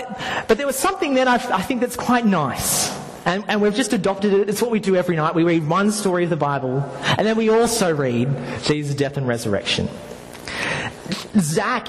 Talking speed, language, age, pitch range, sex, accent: 195 wpm, English, 30-49, 135-205 Hz, male, Australian